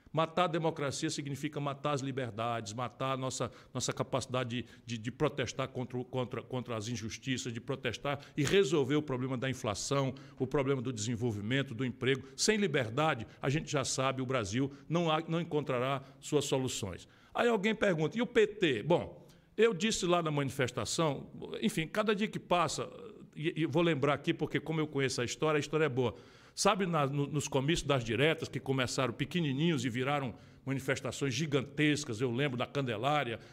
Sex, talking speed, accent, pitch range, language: male, 170 wpm, Brazilian, 130-165 Hz, Portuguese